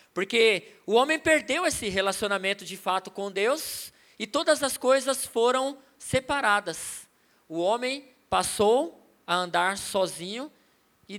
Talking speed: 125 wpm